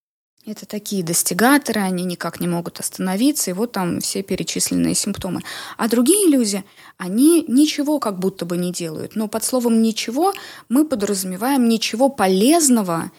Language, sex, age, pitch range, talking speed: Russian, female, 20-39, 185-255 Hz, 145 wpm